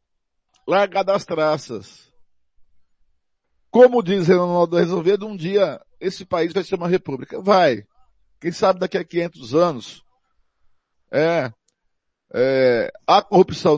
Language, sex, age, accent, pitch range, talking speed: Portuguese, male, 50-69, Brazilian, 135-195 Hz, 120 wpm